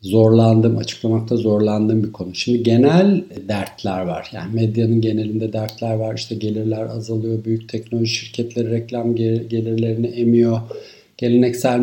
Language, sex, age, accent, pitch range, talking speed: Turkish, male, 50-69, native, 105-120 Hz, 120 wpm